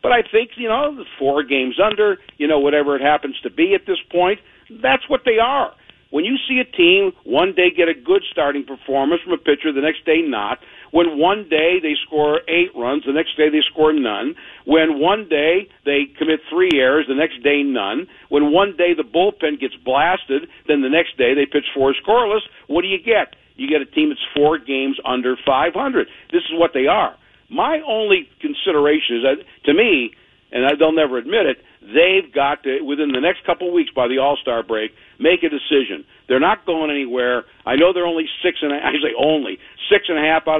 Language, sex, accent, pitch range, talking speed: English, male, American, 140-200 Hz, 220 wpm